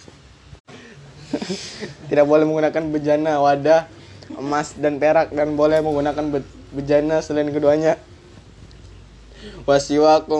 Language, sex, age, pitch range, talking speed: Arabic, male, 20-39, 135-150 Hz, 90 wpm